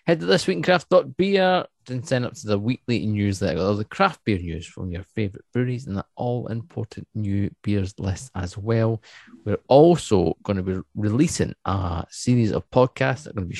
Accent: British